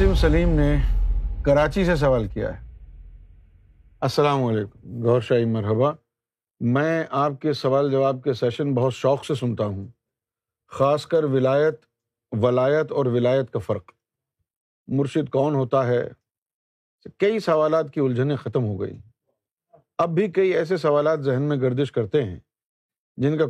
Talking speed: 140 wpm